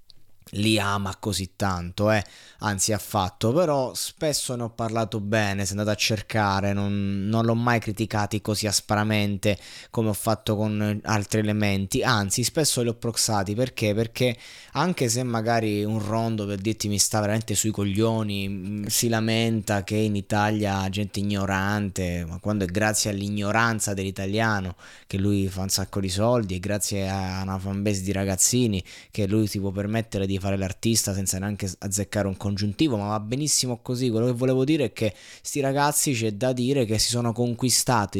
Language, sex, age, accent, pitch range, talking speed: Italian, male, 20-39, native, 100-115 Hz, 170 wpm